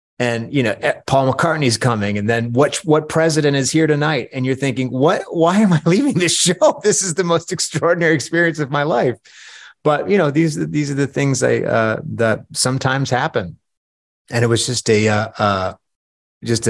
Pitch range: 110-140 Hz